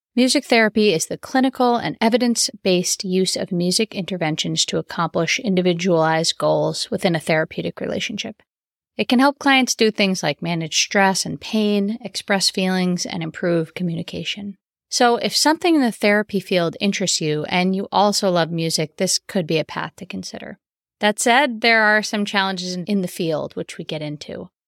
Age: 30-49